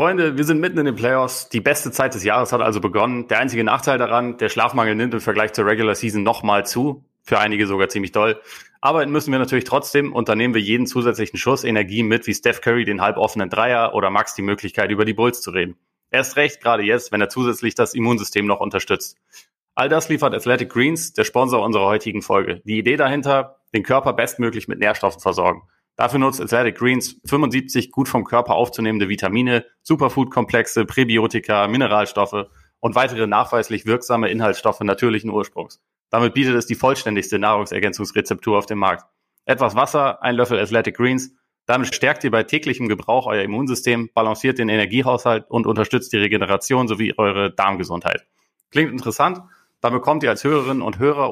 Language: German